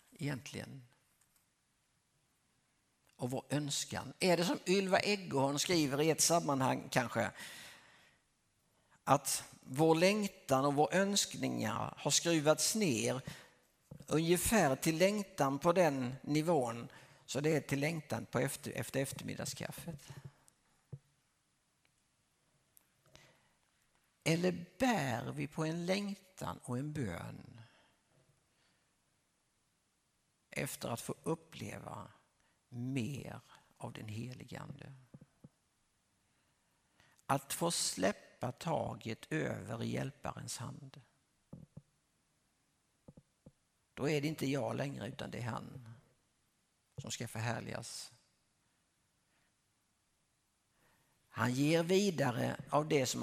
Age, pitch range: 60-79, 125-160 Hz